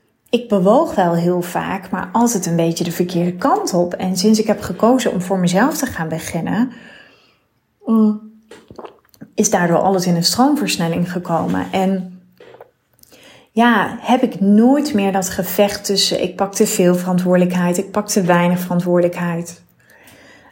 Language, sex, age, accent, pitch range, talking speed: Dutch, female, 30-49, Dutch, 180-225 Hz, 145 wpm